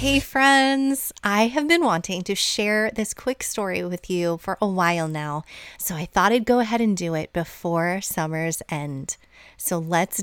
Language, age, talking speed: English, 30-49, 180 wpm